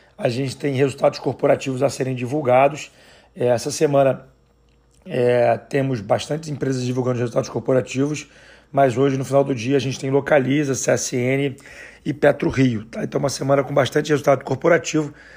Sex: male